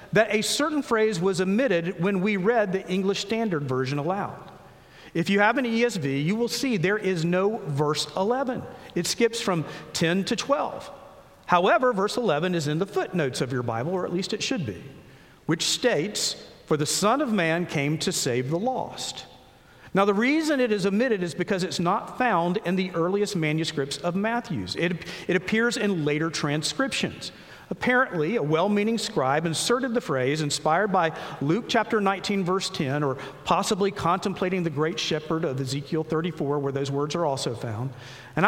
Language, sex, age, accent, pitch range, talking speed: English, male, 50-69, American, 155-220 Hz, 180 wpm